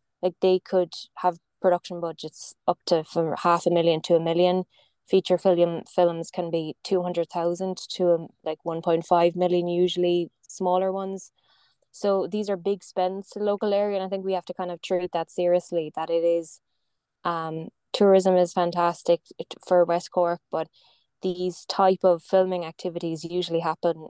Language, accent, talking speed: English, Irish, 170 wpm